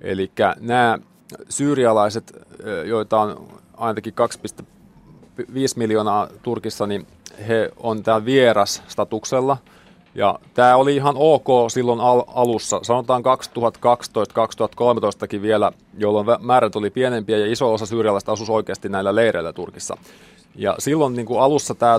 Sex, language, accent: male, Finnish, native